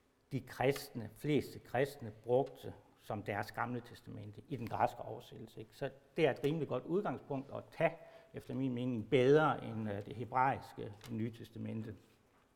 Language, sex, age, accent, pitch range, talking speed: Danish, male, 60-79, native, 115-150 Hz, 155 wpm